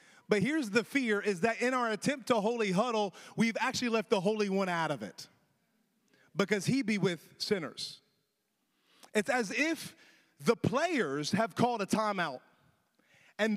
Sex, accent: male, American